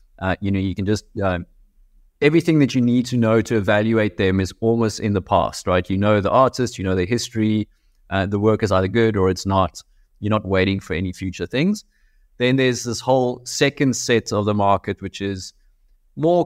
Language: English